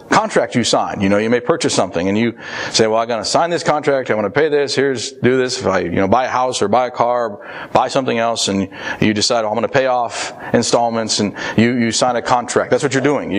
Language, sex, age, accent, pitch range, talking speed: English, male, 40-59, American, 115-140 Hz, 280 wpm